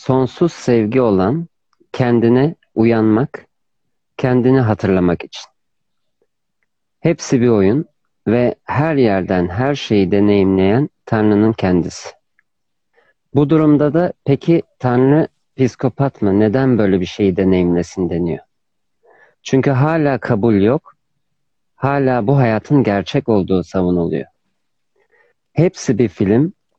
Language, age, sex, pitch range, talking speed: Turkish, 50-69, male, 100-140 Hz, 100 wpm